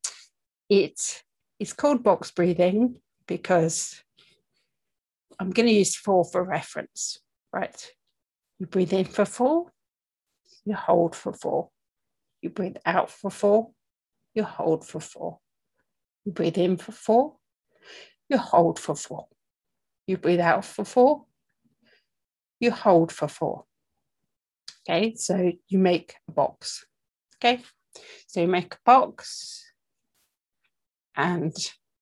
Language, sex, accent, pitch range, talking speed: English, female, British, 175-240 Hz, 120 wpm